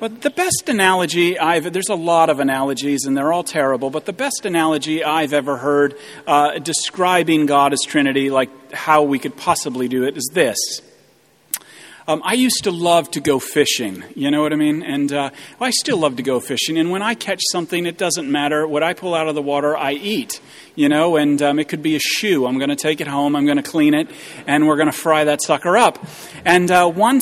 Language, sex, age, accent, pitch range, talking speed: English, male, 40-59, American, 145-185 Hz, 230 wpm